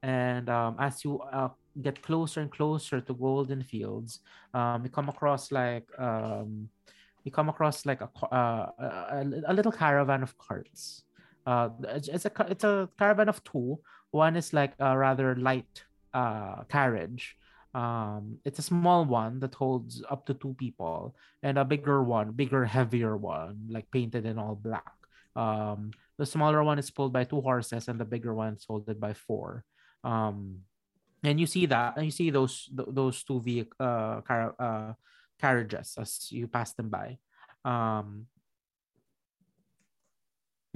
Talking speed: 160 wpm